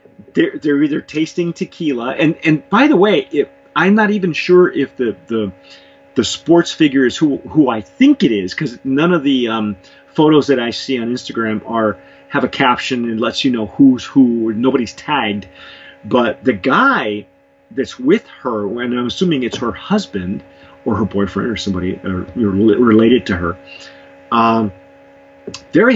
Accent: American